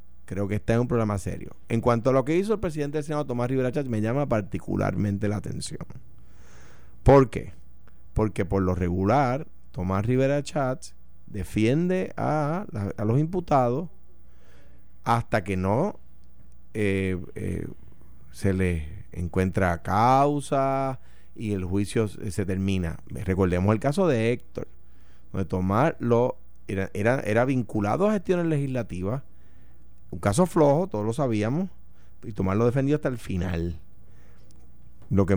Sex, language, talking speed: male, Spanish, 145 wpm